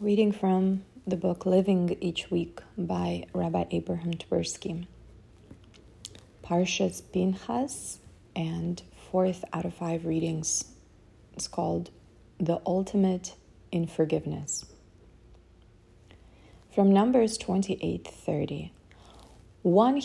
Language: English